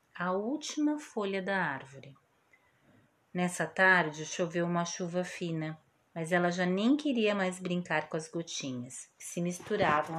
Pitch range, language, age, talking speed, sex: 160-215 Hz, Portuguese, 30-49, 140 wpm, female